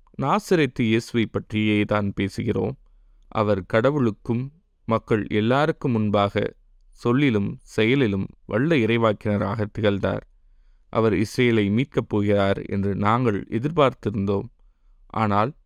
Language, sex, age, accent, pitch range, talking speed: Tamil, male, 20-39, native, 100-120 Hz, 90 wpm